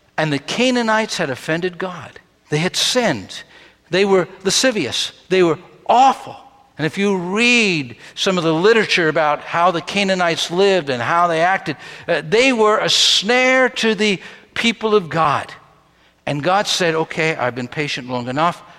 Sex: male